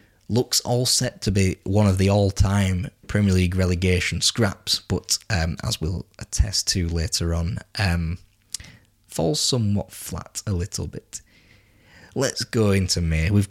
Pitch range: 90-105 Hz